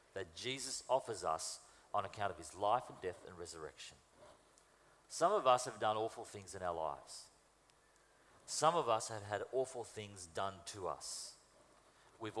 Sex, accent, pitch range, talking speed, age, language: male, Australian, 125-190 Hz, 165 wpm, 40-59, English